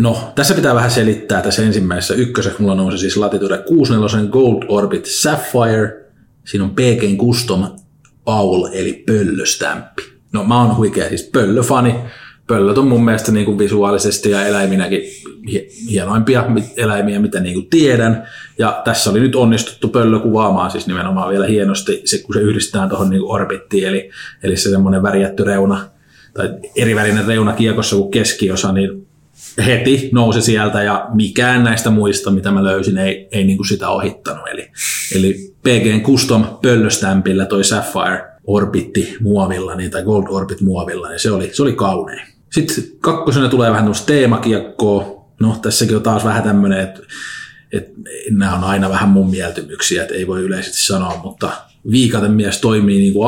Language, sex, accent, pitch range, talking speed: Finnish, male, native, 100-115 Hz, 155 wpm